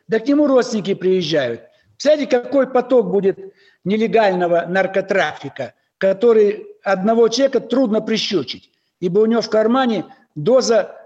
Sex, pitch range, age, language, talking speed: male, 195-240 Hz, 60-79, Russian, 120 wpm